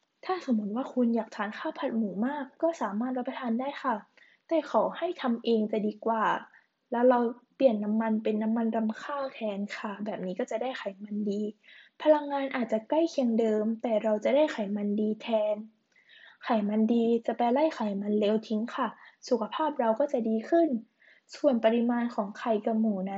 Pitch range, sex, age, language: 220-275 Hz, female, 10-29, Thai